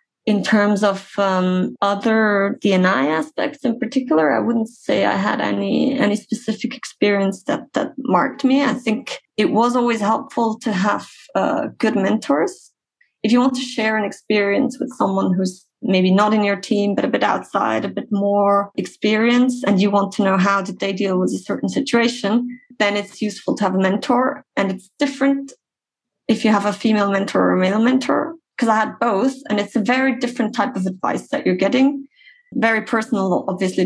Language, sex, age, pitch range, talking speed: English, female, 20-39, 195-245 Hz, 190 wpm